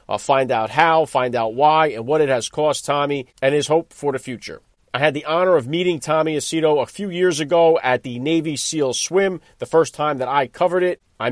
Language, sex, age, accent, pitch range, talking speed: English, male, 40-59, American, 130-165 Hz, 235 wpm